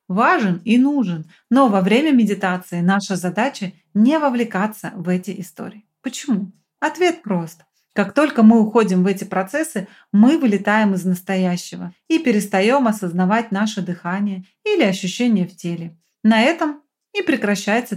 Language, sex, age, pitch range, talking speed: Russian, female, 30-49, 185-235 Hz, 135 wpm